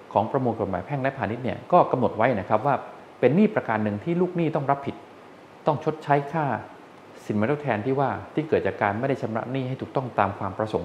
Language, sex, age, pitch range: Thai, male, 20-39, 105-150 Hz